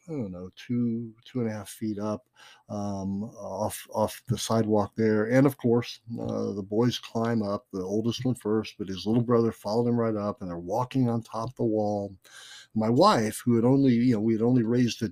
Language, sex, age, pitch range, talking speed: English, male, 60-79, 105-130 Hz, 220 wpm